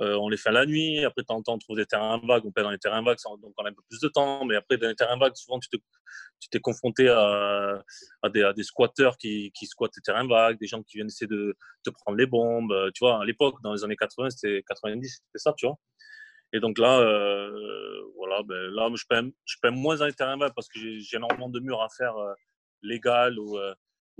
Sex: male